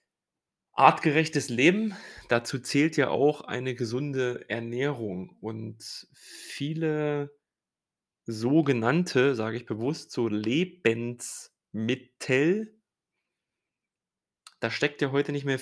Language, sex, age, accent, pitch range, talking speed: German, male, 30-49, German, 115-150 Hz, 90 wpm